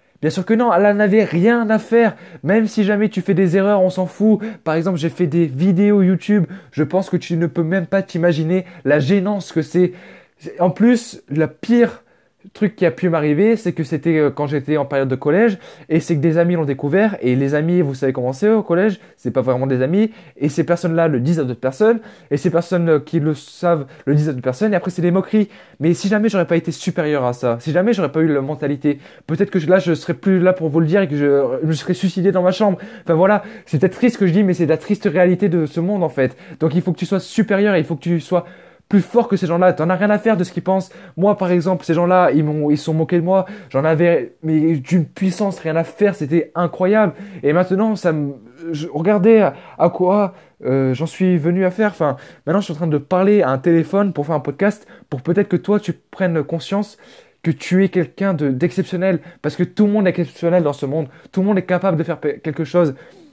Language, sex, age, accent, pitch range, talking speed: French, male, 20-39, French, 160-195 Hz, 255 wpm